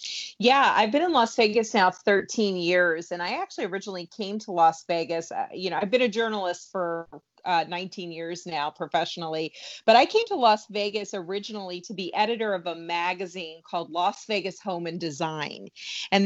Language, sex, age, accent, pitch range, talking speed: English, female, 30-49, American, 170-205 Hz, 185 wpm